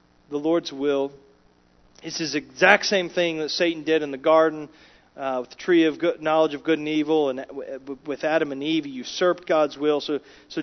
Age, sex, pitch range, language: 40-59, male, 150-210 Hz, English